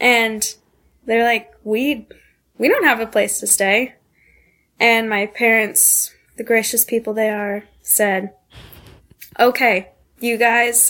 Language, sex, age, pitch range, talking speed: English, female, 10-29, 210-255 Hz, 125 wpm